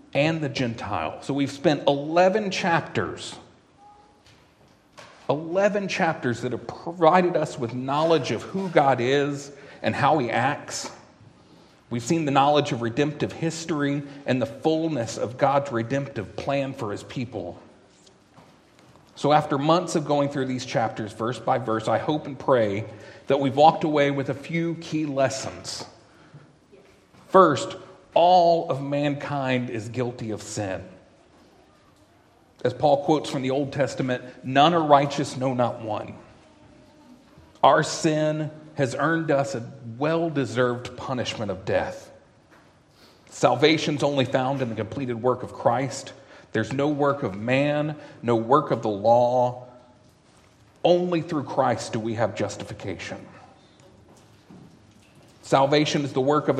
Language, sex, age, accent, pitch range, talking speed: English, male, 40-59, American, 125-155 Hz, 135 wpm